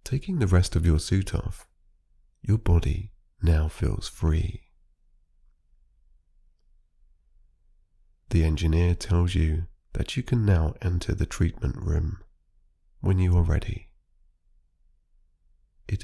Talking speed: 110 wpm